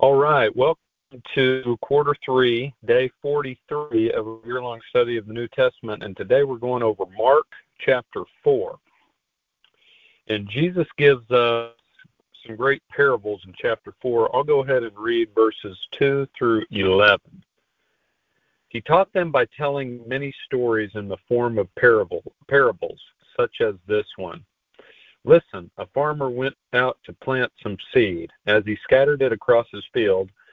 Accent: American